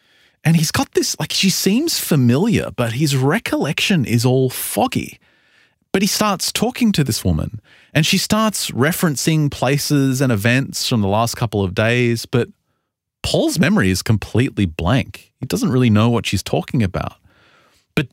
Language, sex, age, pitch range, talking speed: English, male, 30-49, 105-155 Hz, 160 wpm